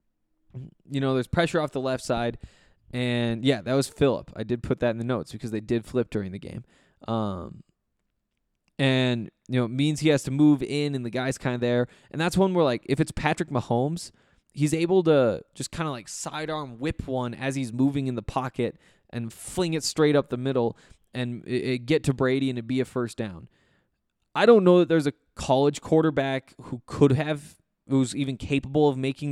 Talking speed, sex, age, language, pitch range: 210 wpm, male, 20-39, English, 120-145 Hz